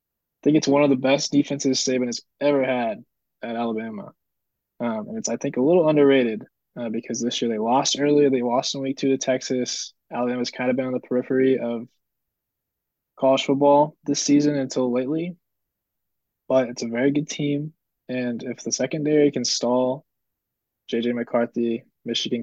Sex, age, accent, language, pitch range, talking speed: male, 20-39, American, English, 115-135 Hz, 175 wpm